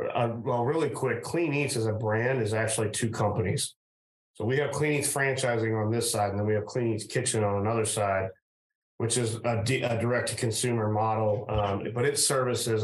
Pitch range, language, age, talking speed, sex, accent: 105-120 Hz, English, 30-49, 190 wpm, male, American